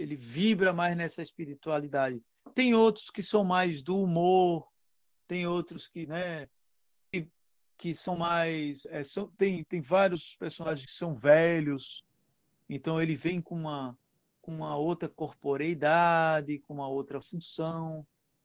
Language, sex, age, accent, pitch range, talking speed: Portuguese, male, 50-69, Brazilian, 145-185 Hz, 125 wpm